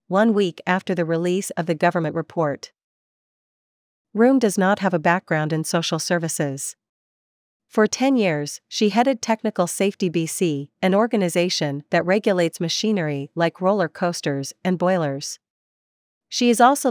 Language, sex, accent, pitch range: English, female, American, 165-195 Hz